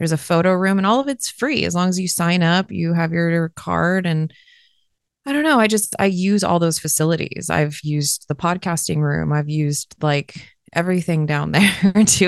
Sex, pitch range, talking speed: female, 160-195 Hz, 210 wpm